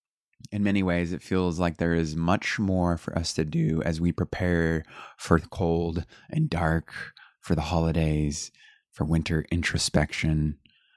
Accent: American